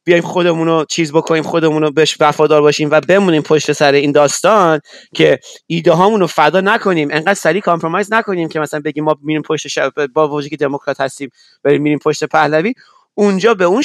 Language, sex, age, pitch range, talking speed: Persian, male, 30-49, 145-185 Hz, 190 wpm